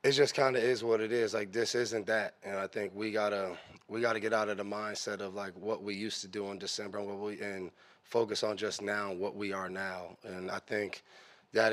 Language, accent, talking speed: English, American, 250 wpm